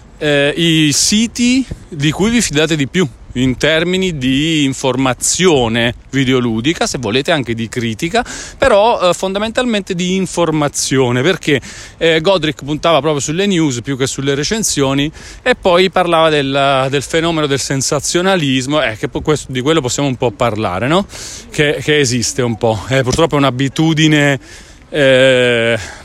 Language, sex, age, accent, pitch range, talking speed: Italian, male, 30-49, native, 120-155 Hz, 145 wpm